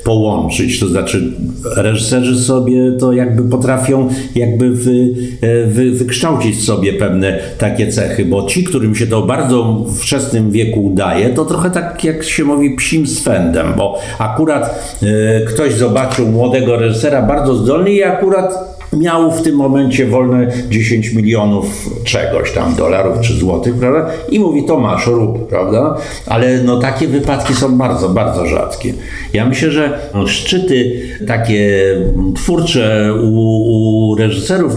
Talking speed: 140 wpm